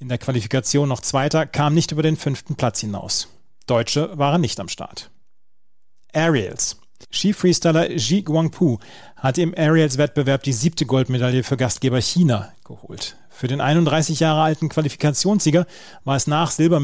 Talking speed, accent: 145 wpm, German